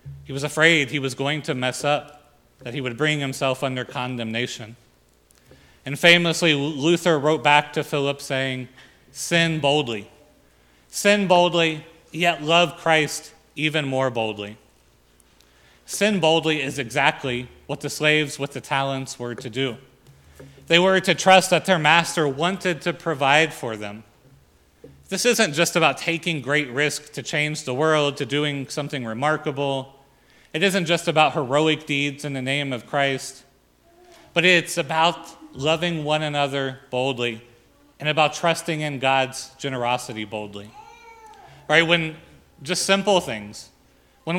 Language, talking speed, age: English, 140 wpm, 30-49